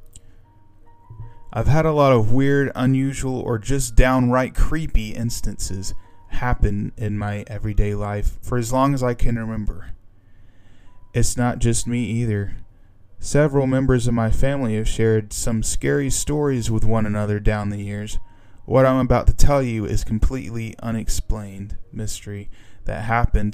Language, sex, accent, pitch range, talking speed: English, male, American, 105-120 Hz, 145 wpm